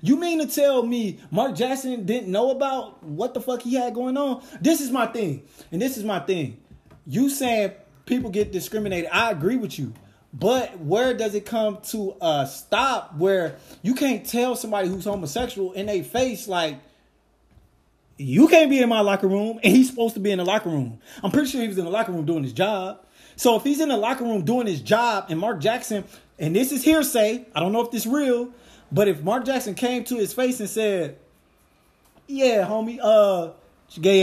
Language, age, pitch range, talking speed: English, 20-39, 170-245 Hz, 215 wpm